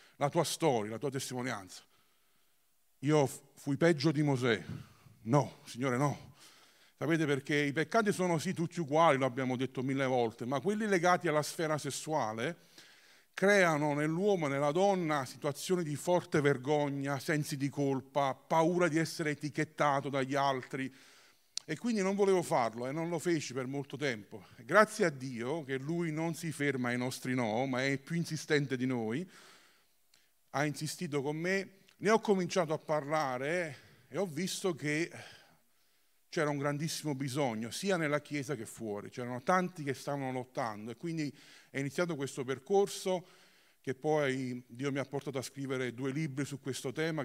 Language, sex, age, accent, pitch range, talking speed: Italian, male, 40-59, native, 130-165 Hz, 160 wpm